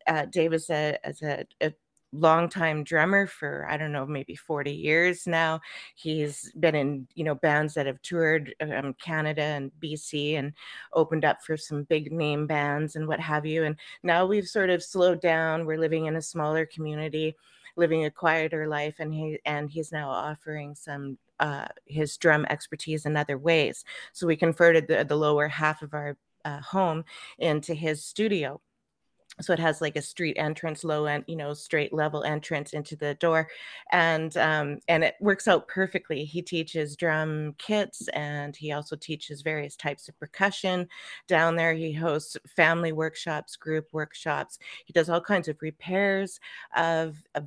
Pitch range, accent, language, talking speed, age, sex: 150-165 Hz, American, English, 175 wpm, 30-49, female